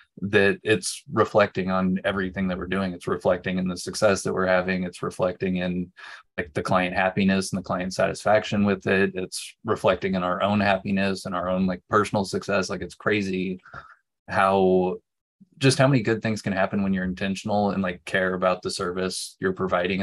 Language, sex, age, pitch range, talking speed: English, male, 20-39, 95-105 Hz, 190 wpm